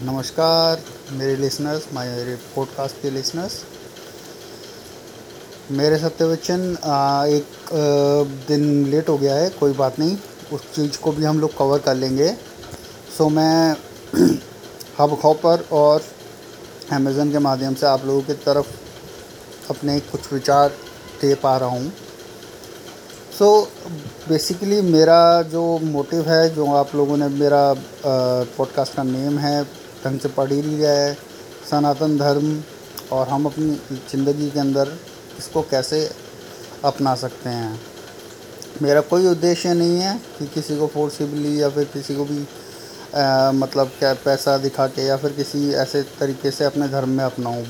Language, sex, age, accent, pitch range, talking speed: Hindi, male, 30-49, native, 135-155 Hz, 135 wpm